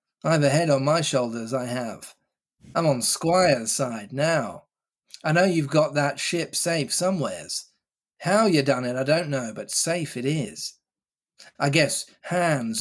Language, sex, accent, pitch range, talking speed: English, male, British, 130-155 Hz, 170 wpm